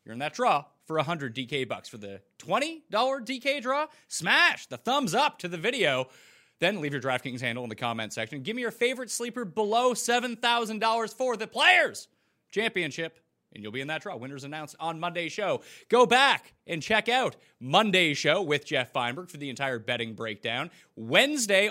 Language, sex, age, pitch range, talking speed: English, male, 30-49, 135-225 Hz, 185 wpm